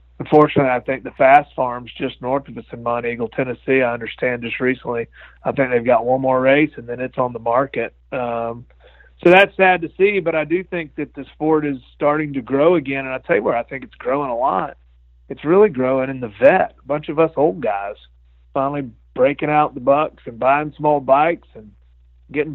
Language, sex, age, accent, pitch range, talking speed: English, male, 40-59, American, 120-150 Hz, 220 wpm